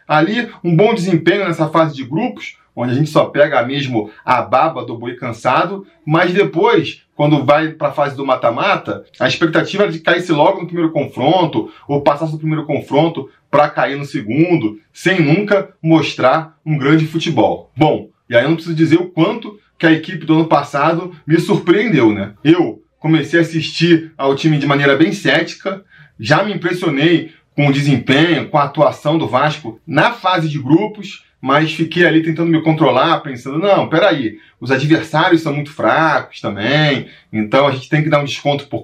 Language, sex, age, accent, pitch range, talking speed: Portuguese, male, 20-39, Brazilian, 140-170 Hz, 185 wpm